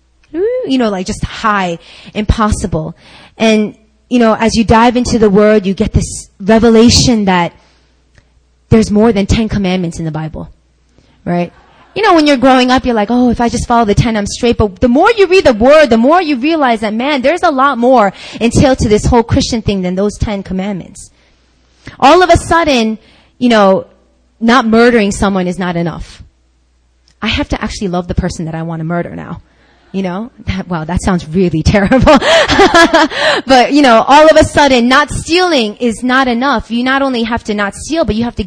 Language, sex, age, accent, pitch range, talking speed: English, female, 20-39, American, 180-255 Hz, 205 wpm